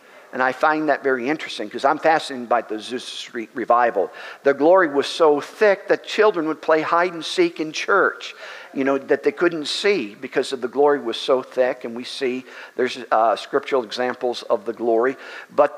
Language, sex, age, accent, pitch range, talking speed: English, male, 50-69, American, 125-160 Hz, 195 wpm